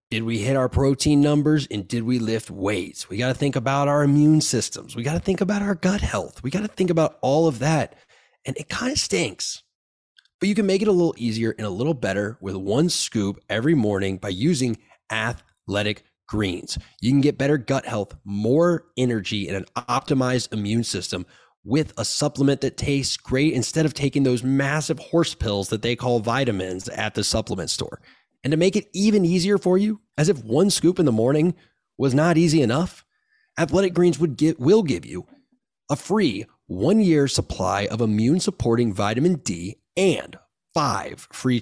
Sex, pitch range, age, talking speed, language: male, 110-165 Hz, 20-39, 190 wpm, English